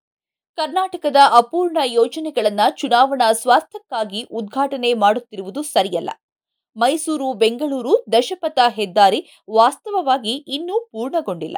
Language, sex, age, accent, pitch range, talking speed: Kannada, female, 20-39, native, 220-290 Hz, 80 wpm